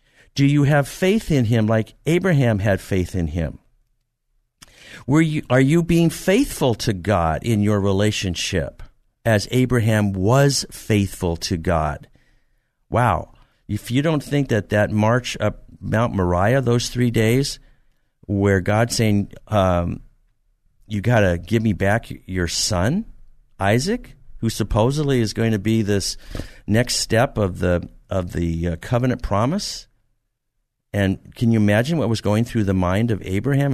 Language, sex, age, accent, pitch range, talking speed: English, male, 50-69, American, 100-125 Hz, 150 wpm